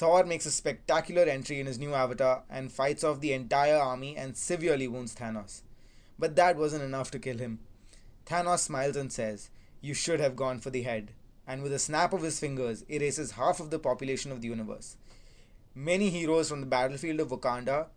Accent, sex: Indian, male